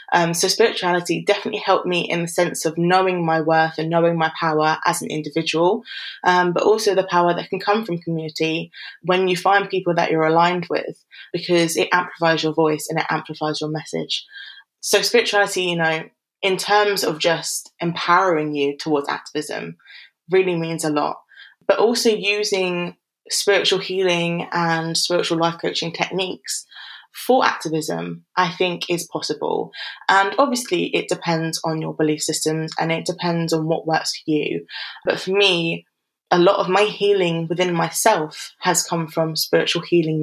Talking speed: 165 wpm